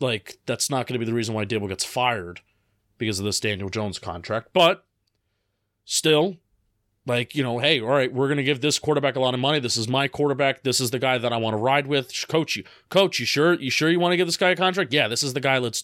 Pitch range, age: 120-170 Hz, 30-49